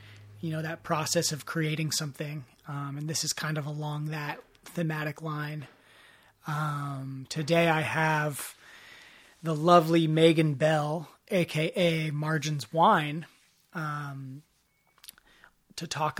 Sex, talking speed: male, 115 wpm